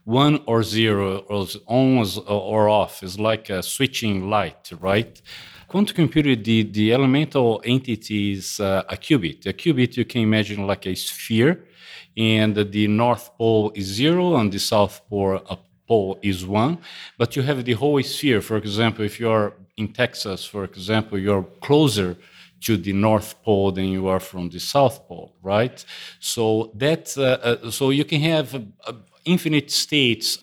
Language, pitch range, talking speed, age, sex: English, 100-125 Hz, 170 wpm, 50-69, male